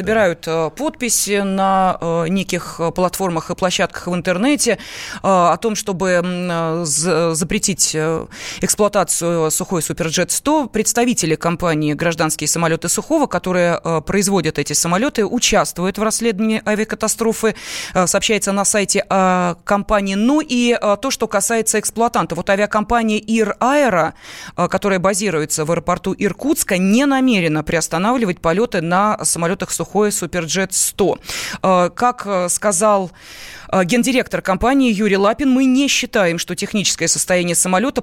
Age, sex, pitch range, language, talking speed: 20-39, female, 175-220 Hz, Russian, 110 wpm